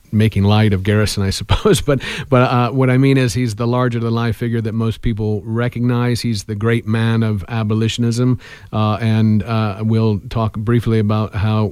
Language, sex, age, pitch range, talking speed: English, male, 50-69, 110-125 Hz, 180 wpm